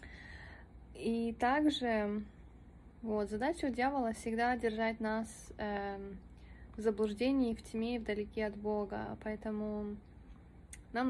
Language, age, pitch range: English, 20-39, 210-235 Hz